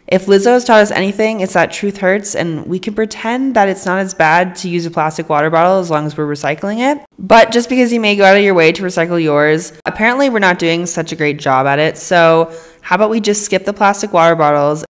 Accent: American